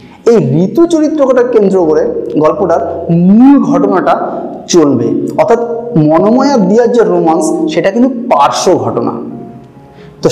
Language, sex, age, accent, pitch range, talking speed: Bengali, male, 30-49, native, 150-245 Hz, 85 wpm